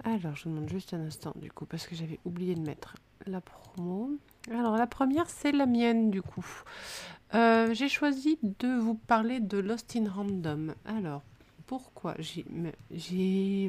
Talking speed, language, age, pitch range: 165 wpm, French, 30-49, 195-240 Hz